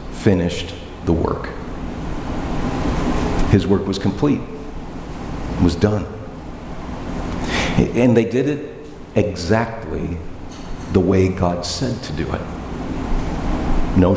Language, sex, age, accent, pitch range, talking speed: English, male, 50-69, American, 85-125 Hz, 95 wpm